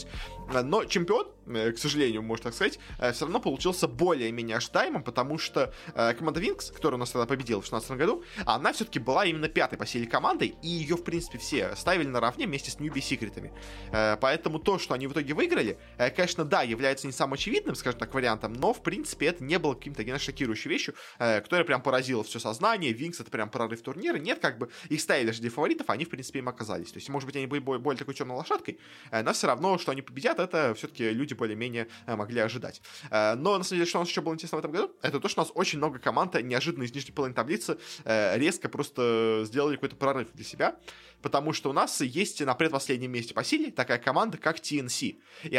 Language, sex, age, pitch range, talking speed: Russian, male, 20-39, 115-160 Hz, 215 wpm